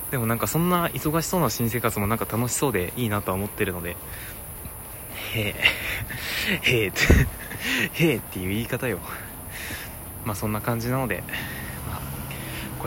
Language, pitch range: Japanese, 95-115 Hz